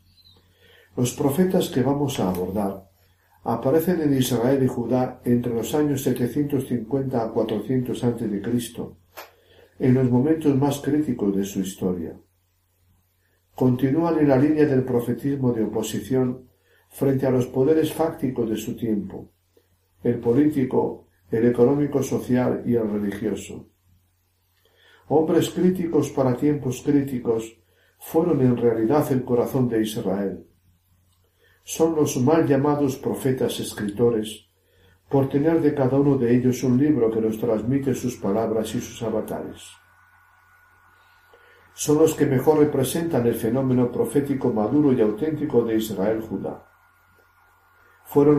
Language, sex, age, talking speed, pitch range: Spanish, male, 60-79, 125 wpm, 105-140 Hz